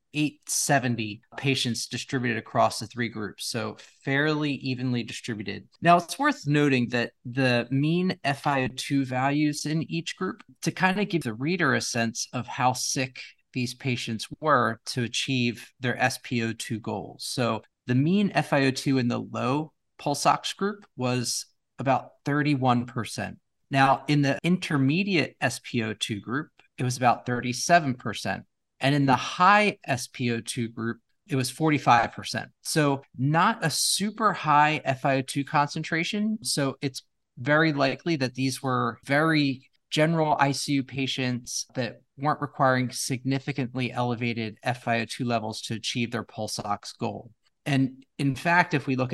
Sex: male